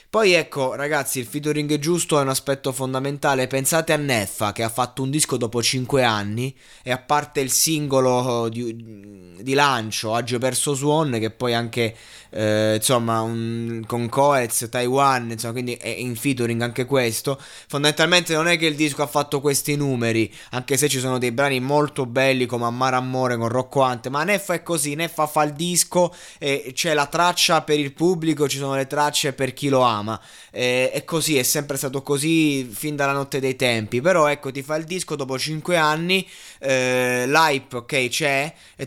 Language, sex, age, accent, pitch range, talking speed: Italian, male, 20-39, native, 125-150 Hz, 190 wpm